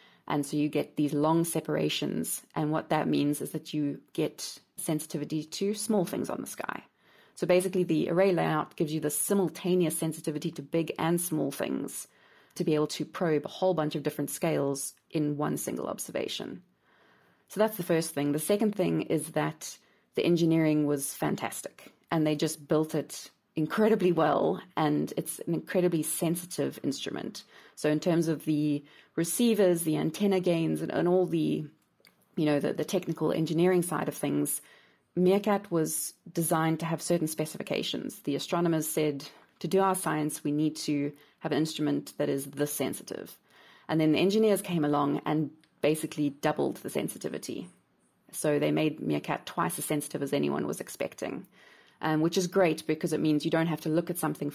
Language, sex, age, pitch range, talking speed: English, female, 30-49, 150-170 Hz, 175 wpm